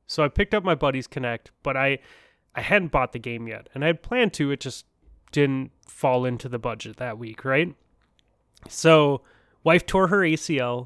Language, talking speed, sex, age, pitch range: English, 195 wpm, male, 20-39, 120-145 Hz